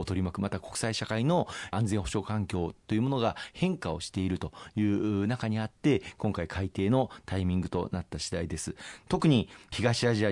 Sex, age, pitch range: male, 40-59, 95-115 Hz